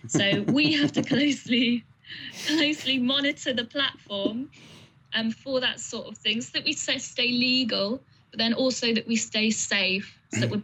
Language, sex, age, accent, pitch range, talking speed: English, female, 20-39, British, 195-230 Hz, 170 wpm